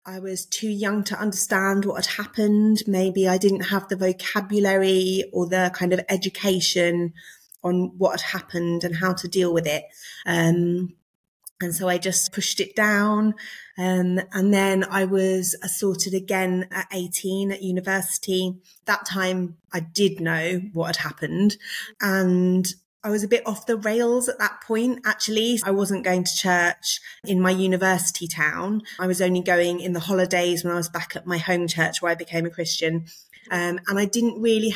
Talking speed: 180 wpm